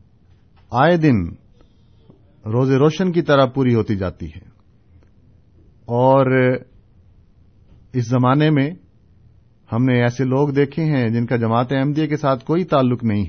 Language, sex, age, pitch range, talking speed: Urdu, male, 50-69, 100-130 Hz, 130 wpm